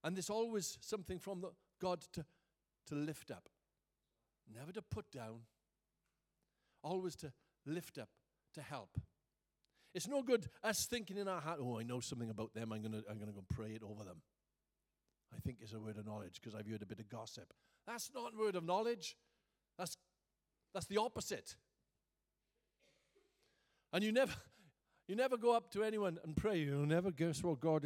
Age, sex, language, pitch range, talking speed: 50-69, male, English, 120-175 Hz, 185 wpm